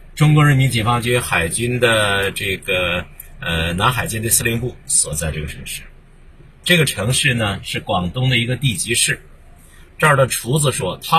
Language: Chinese